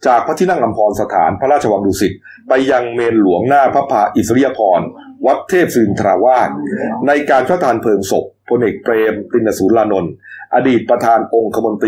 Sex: male